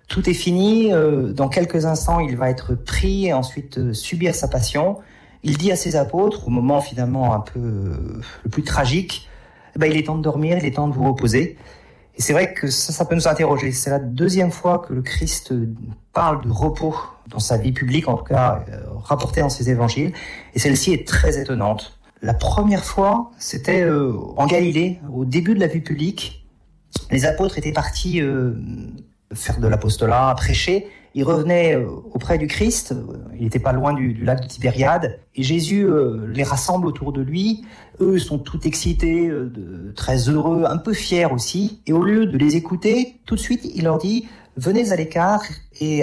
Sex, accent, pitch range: male, French, 125-175 Hz